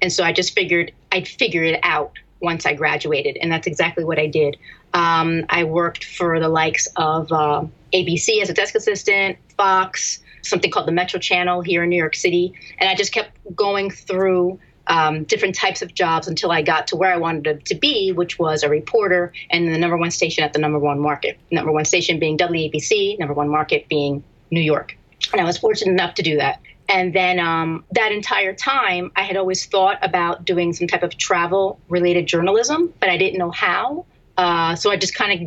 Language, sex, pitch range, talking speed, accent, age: English, female, 165-190 Hz, 210 wpm, American, 30-49